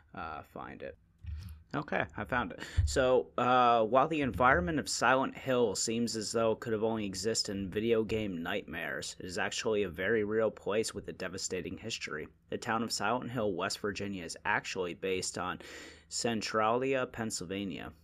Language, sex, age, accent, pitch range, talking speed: English, male, 30-49, American, 95-110 Hz, 170 wpm